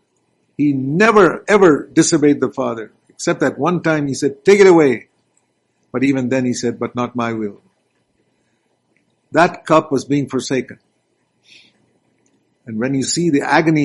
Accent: Indian